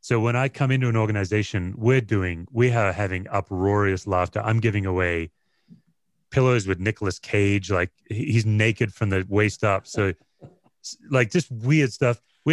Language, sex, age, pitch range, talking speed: English, male, 30-49, 90-115 Hz, 165 wpm